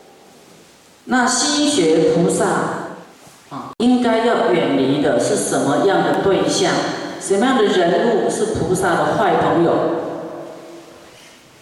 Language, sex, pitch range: Chinese, female, 170-220 Hz